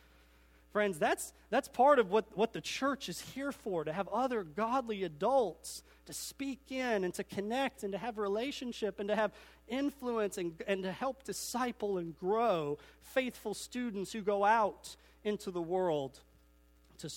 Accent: American